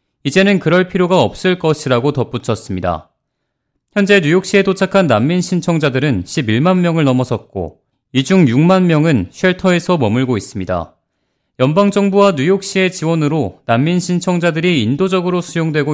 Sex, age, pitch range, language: male, 30-49, 135-190 Hz, Korean